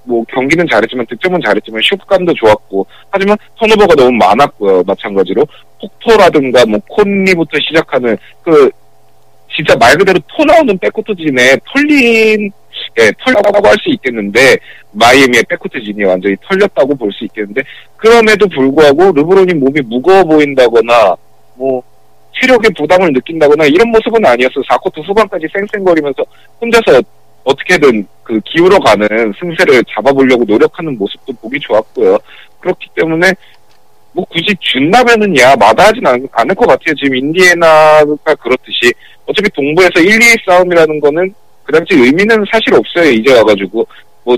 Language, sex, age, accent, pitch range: Korean, male, 40-59, native, 130-215 Hz